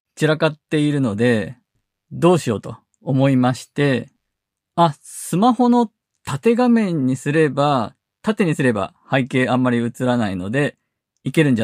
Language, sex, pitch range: Japanese, male, 120-170 Hz